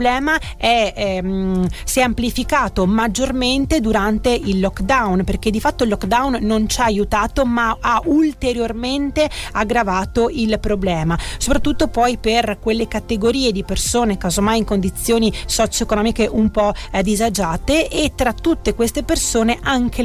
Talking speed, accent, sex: 140 wpm, native, female